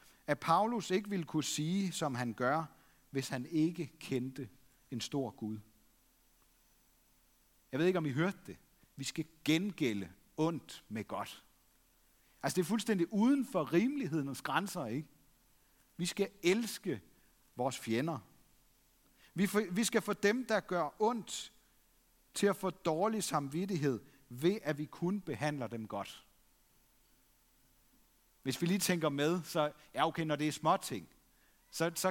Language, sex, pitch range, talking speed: Danish, male, 140-190 Hz, 140 wpm